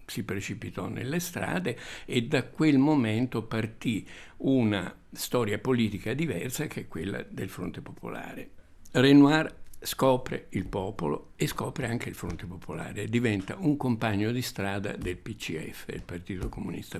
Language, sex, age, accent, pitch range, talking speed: Italian, male, 60-79, native, 95-125 Hz, 140 wpm